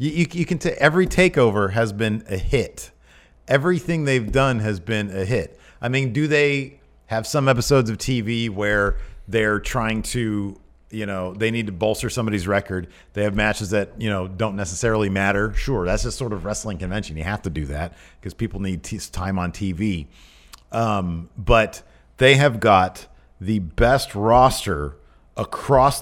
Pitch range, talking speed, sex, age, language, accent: 95-120 Hz, 180 wpm, male, 40-59, English, American